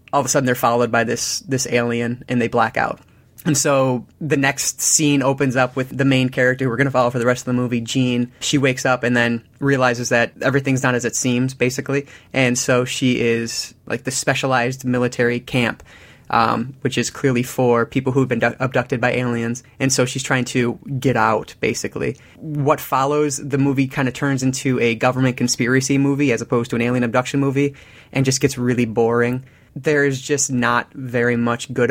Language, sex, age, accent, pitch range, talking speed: English, male, 20-39, American, 120-135 Hz, 205 wpm